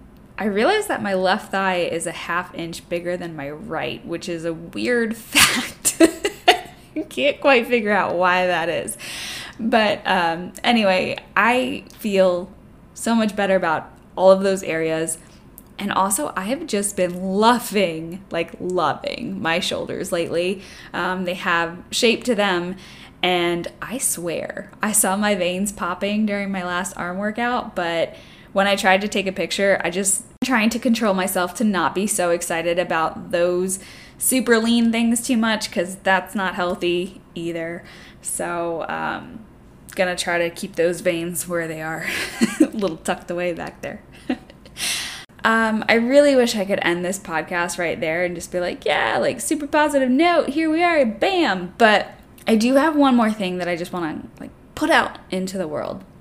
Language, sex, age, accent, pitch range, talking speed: English, female, 10-29, American, 175-230 Hz, 175 wpm